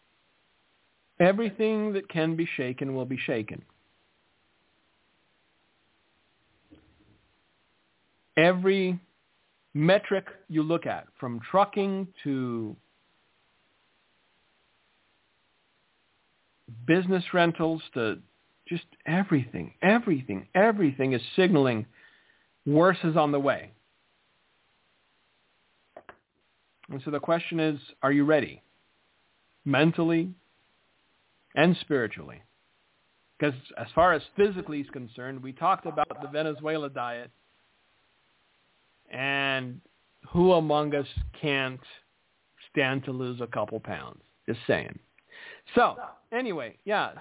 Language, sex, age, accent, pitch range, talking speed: English, male, 50-69, American, 130-170 Hz, 90 wpm